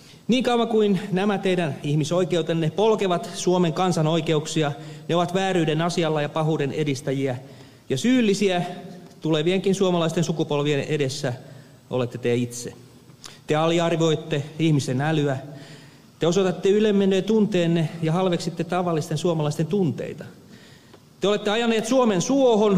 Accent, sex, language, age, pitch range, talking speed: native, male, Finnish, 40-59, 150-195 Hz, 115 wpm